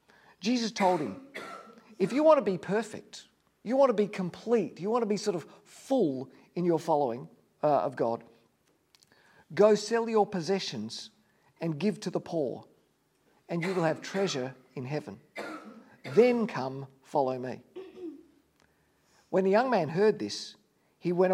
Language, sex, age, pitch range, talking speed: English, male, 50-69, 150-215 Hz, 155 wpm